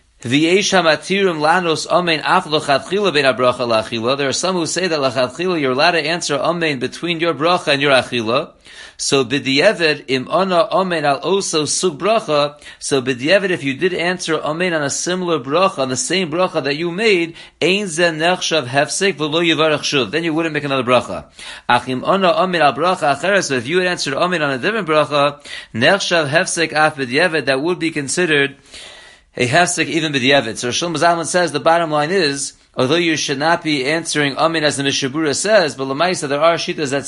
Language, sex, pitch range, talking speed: English, male, 135-170 Hz, 150 wpm